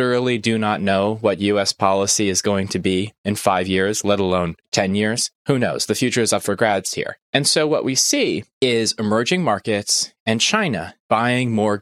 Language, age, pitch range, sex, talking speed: English, 20-39, 100-140 Hz, male, 200 wpm